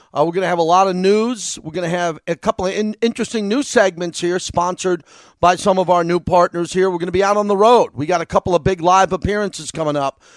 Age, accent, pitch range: 40-59, American, 165-190 Hz